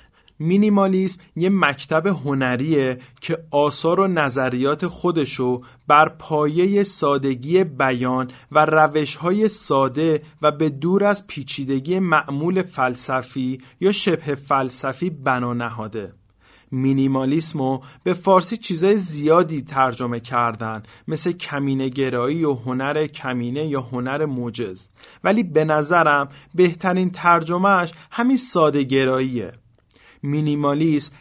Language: Persian